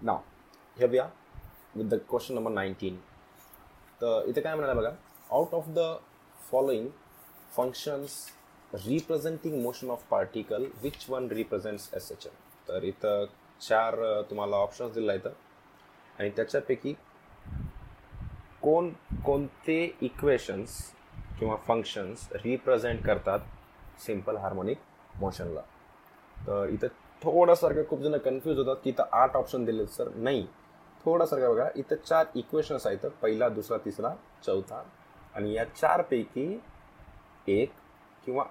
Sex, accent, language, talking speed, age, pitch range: male, native, Hindi, 100 wpm, 20-39, 115-165 Hz